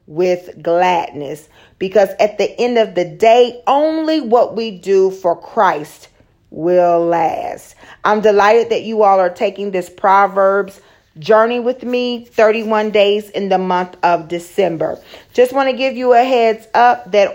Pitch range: 185-225 Hz